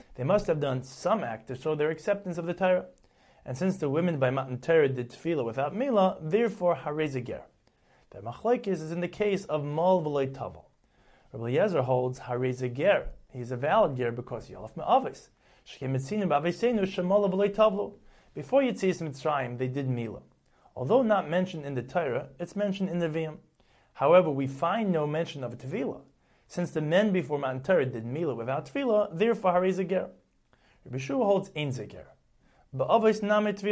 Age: 30-49